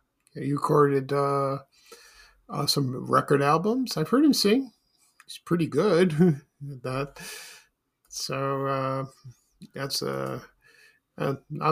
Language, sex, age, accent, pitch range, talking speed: English, male, 50-69, American, 135-170 Hz, 100 wpm